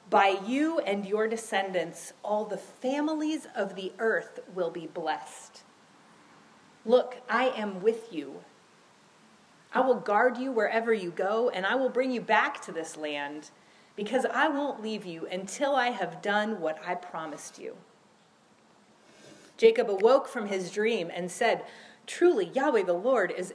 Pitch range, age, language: 195-255 Hz, 30-49, English